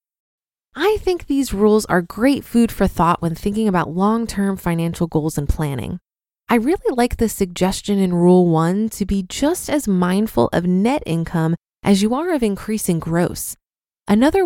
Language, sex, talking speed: English, female, 165 wpm